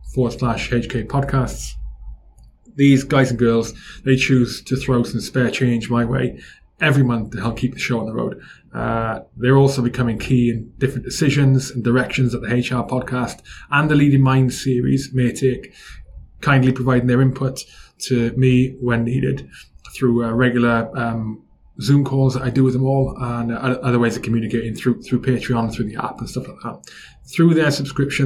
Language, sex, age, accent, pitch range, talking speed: English, male, 20-39, British, 120-135 Hz, 185 wpm